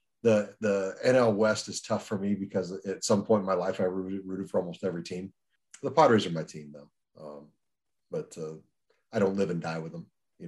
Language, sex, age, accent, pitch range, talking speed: English, male, 40-59, American, 85-100 Hz, 225 wpm